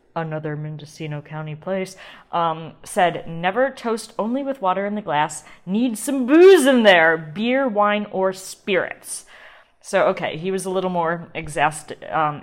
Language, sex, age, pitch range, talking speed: English, female, 20-39, 160-220 Hz, 155 wpm